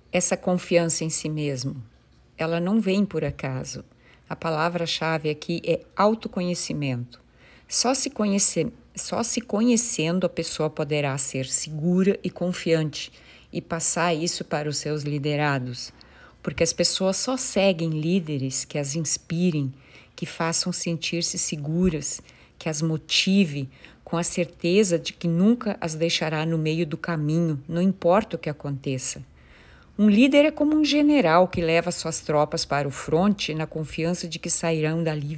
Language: Portuguese